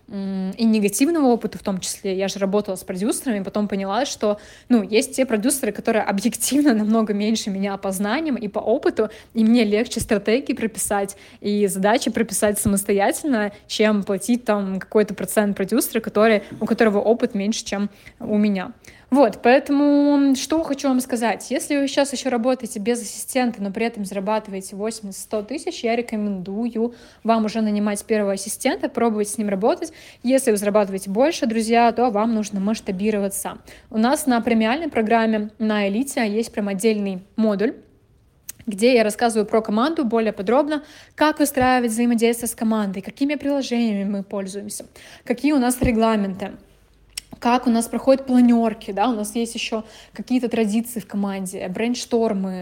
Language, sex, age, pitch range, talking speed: Russian, female, 20-39, 205-240 Hz, 155 wpm